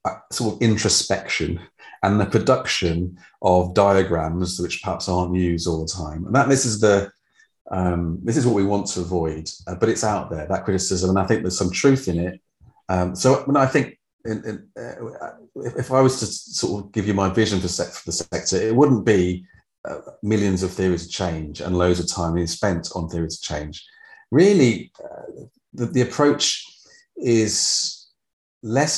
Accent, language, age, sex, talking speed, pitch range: British, English, 40-59, male, 195 wpm, 85-110 Hz